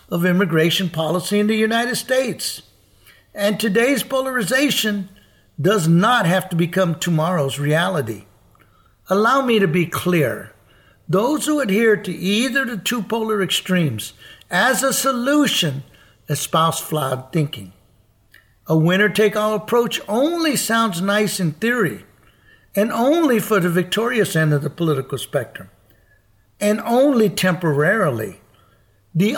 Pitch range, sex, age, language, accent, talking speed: 145-215 Hz, male, 60-79, English, American, 125 wpm